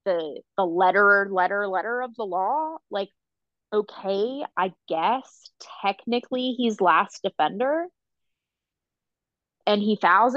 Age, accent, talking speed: 20-39, American, 110 wpm